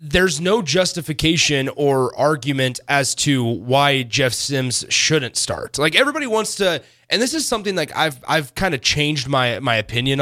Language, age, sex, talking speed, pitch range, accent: English, 30-49, male, 170 wpm, 125-165 Hz, American